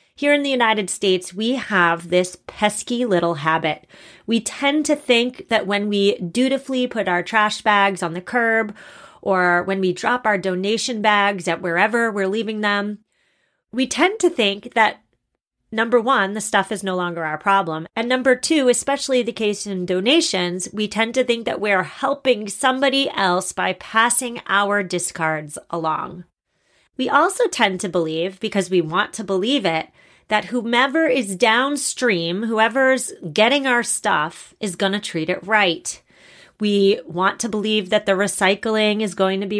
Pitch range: 190-235 Hz